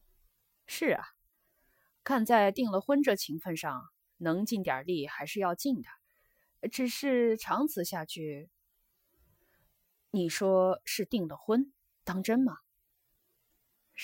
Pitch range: 160-220 Hz